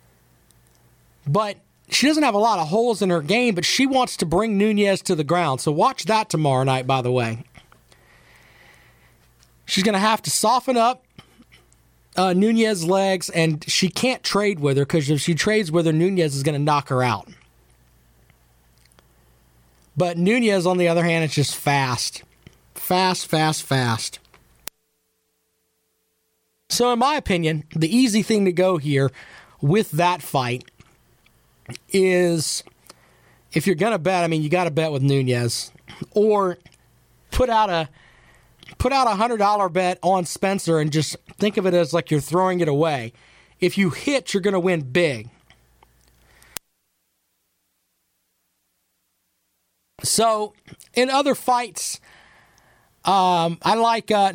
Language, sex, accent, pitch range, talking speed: English, male, American, 130-200 Hz, 145 wpm